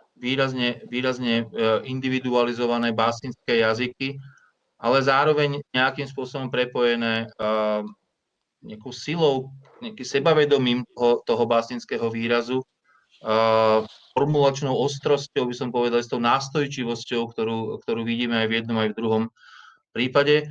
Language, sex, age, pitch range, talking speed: Slovak, male, 30-49, 110-135 Hz, 110 wpm